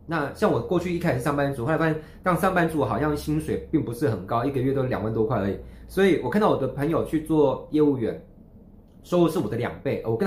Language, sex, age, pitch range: Chinese, male, 20-39, 110-160 Hz